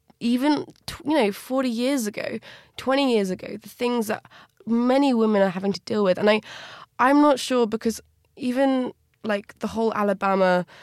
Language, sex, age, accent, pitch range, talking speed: English, female, 20-39, British, 185-215 Hz, 165 wpm